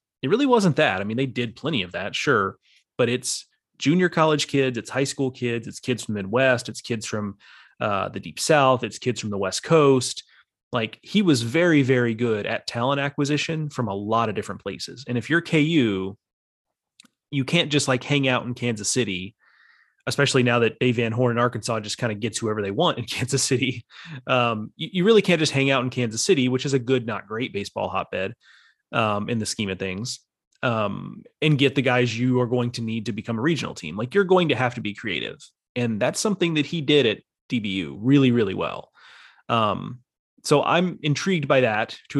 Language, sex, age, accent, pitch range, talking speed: English, male, 30-49, American, 115-145 Hz, 215 wpm